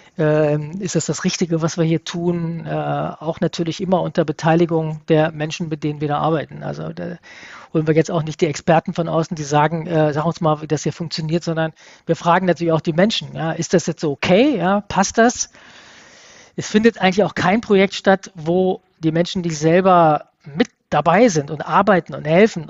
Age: 40-59